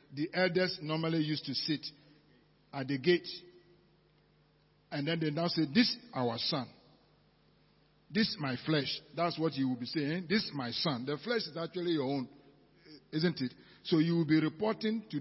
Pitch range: 150-190 Hz